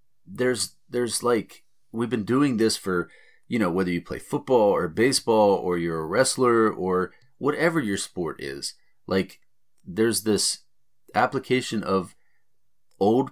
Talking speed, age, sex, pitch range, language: 140 wpm, 30-49, male, 90-110 Hz, English